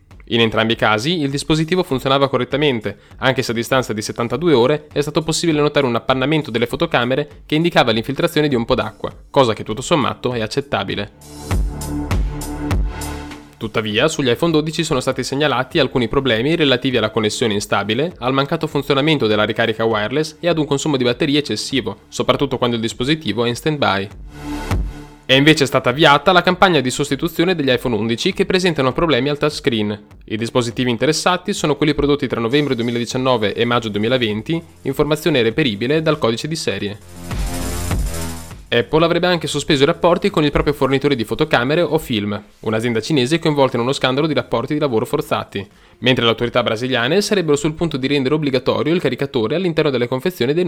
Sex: male